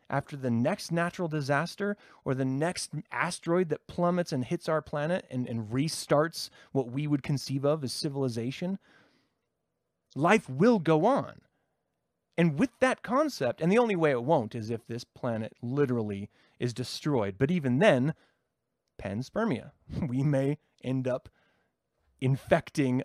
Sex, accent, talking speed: male, American, 145 wpm